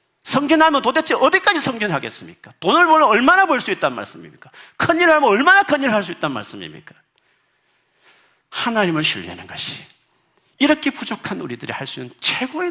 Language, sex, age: Korean, male, 50-69